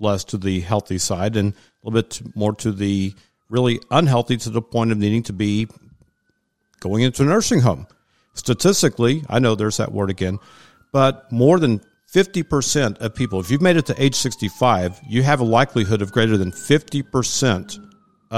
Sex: male